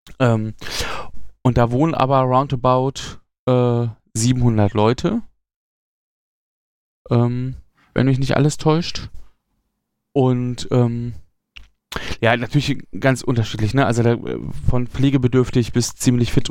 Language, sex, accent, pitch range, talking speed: German, male, German, 110-130 Hz, 105 wpm